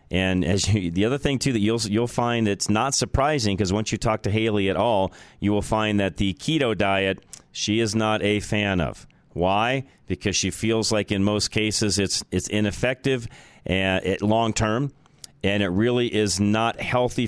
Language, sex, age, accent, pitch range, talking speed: English, male, 40-59, American, 95-120 Hz, 190 wpm